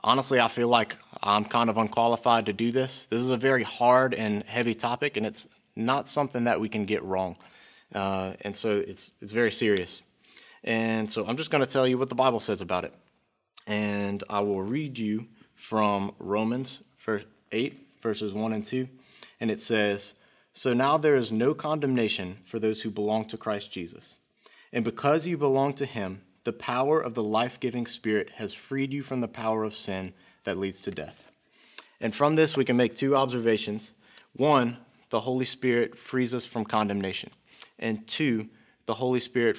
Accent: American